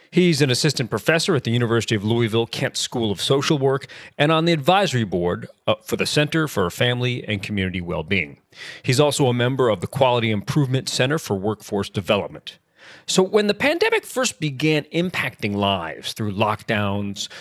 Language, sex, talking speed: English, male, 165 wpm